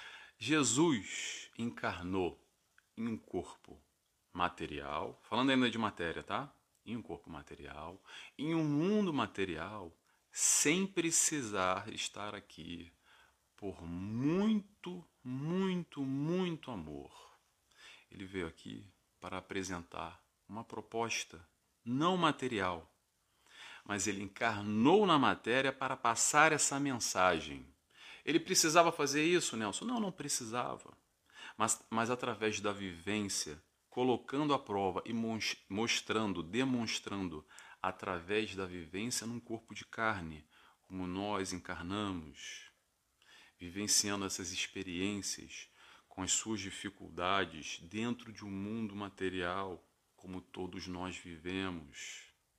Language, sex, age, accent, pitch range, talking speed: Portuguese, male, 40-59, Brazilian, 95-130 Hz, 105 wpm